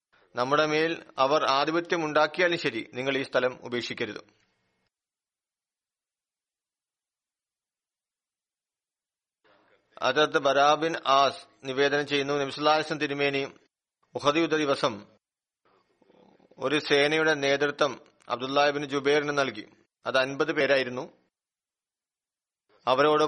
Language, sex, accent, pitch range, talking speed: Malayalam, male, native, 135-155 Hz, 75 wpm